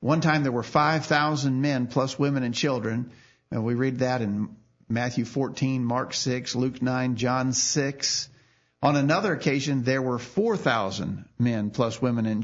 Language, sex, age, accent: English, male, 50-69, American